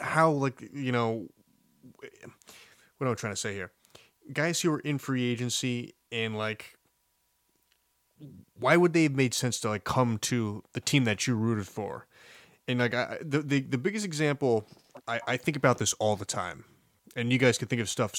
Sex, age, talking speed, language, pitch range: male, 20-39, 190 wpm, English, 110-130 Hz